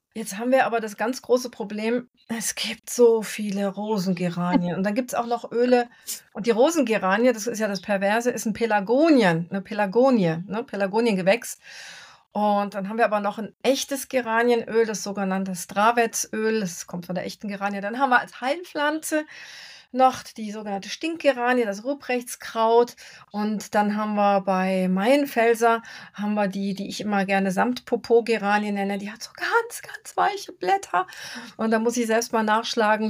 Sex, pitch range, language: female, 200-240 Hz, German